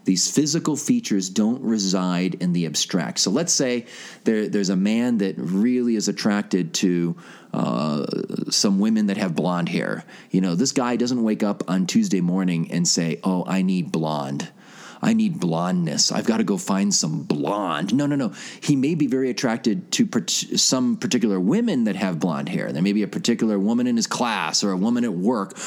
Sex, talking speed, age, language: male, 195 wpm, 30-49, English